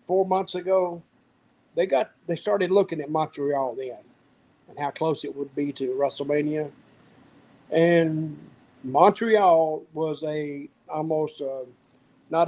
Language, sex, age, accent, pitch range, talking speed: English, male, 50-69, American, 145-185 Hz, 125 wpm